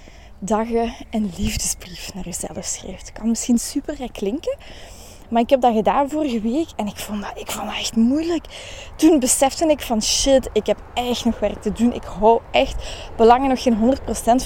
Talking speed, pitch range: 200 wpm, 210-265 Hz